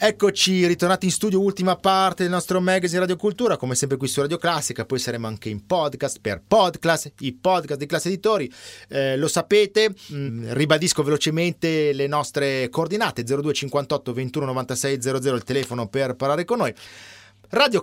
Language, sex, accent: Italian, male, native